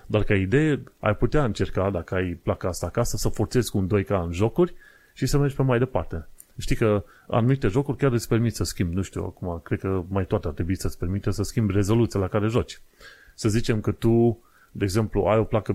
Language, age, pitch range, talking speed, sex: Romanian, 30-49, 95-125 Hz, 225 wpm, male